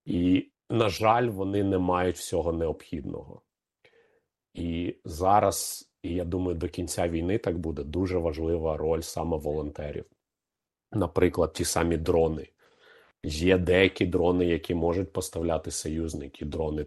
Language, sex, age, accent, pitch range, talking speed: Ukrainian, male, 40-59, native, 80-90 Hz, 125 wpm